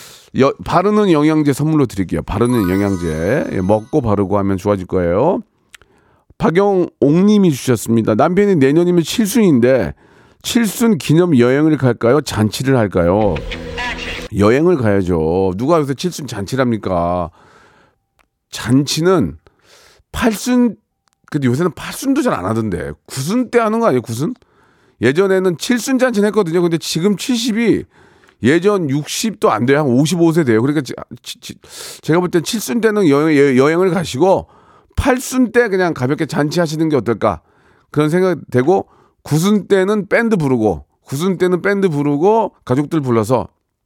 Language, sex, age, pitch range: Korean, male, 40-59, 115-190 Hz